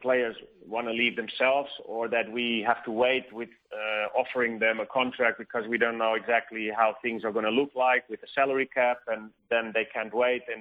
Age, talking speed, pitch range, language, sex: 30-49, 220 wpm, 110-125 Hz, English, male